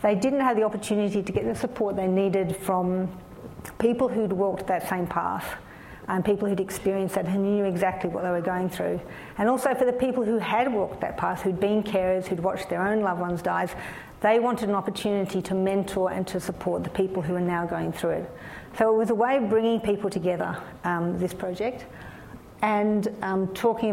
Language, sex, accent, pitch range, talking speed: English, female, Australian, 185-220 Hz, 210 wpm